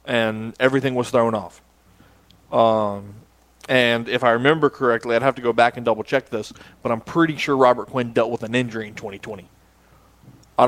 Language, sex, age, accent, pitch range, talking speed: English, male, 20-39, American, 115-135 Hz, 190 wpm